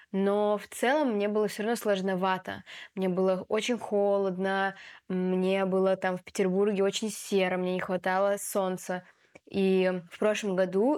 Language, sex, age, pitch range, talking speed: Russian, female, 20-39, 185-210 Hz, 150 wpm